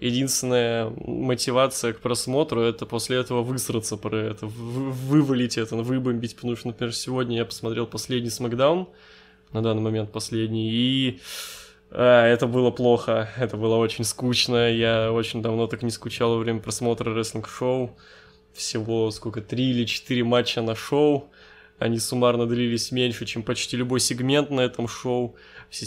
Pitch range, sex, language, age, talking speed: 115-130 Hz, male, Russian, 20-39, 155 wpm